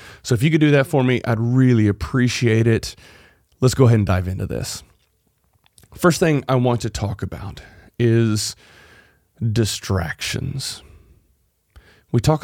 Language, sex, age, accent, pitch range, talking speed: English, male, 30-49, American, 105-135 Hz, 145 wpm